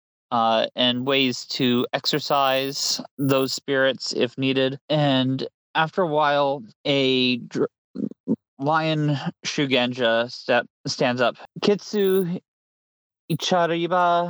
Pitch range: 130-175 Hz